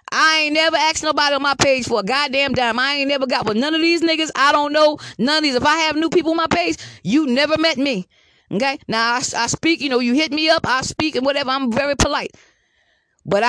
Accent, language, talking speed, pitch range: American, English, 260 wpm, 230-290 Hz